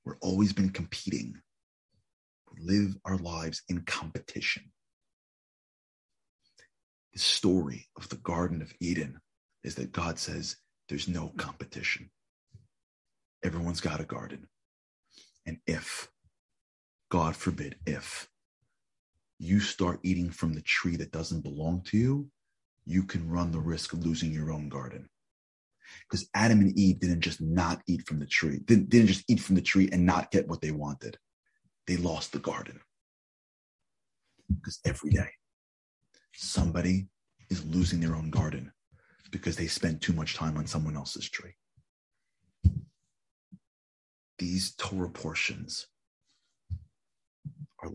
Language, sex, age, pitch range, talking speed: English, male, 40-59, 80-95 Hz, 135 wpm